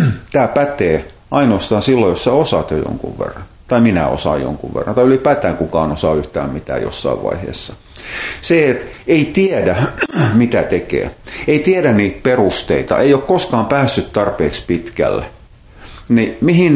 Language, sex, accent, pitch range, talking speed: Finnish, male, native, 90-125 Hz, 145 wpm